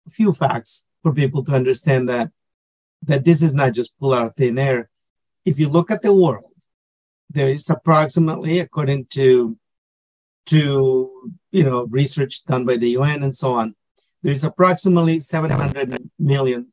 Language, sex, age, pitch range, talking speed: English, male, 50-69, 130-170 Hz, 160 wpm